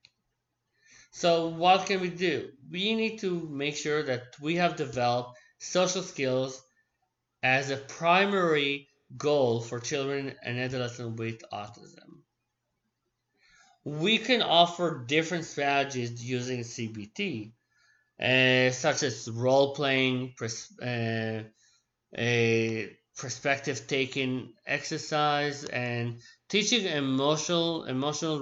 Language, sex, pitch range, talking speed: English, male, 130-170 Hz, 95 wpm